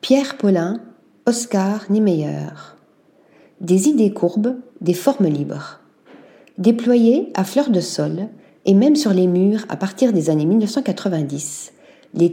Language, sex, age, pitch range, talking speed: French, female, 40-59, 175-245 Hz, 125 wpm